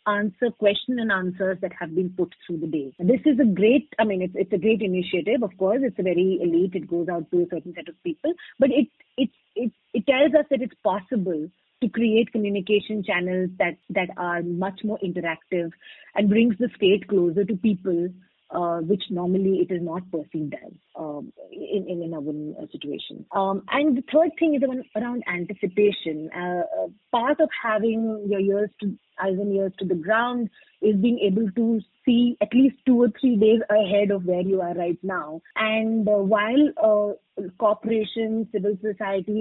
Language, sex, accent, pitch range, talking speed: English, female, Indian, 180-225 Hz, 190 wpm